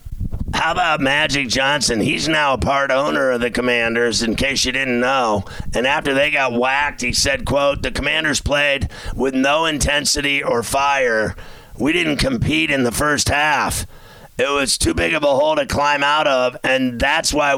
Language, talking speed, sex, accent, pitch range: English, 185 wpm, male, American, 125-145 Hz